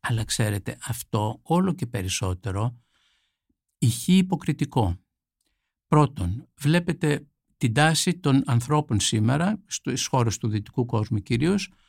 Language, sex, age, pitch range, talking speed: Greek, male, 60-79, 110-155 Hz, 105 wpm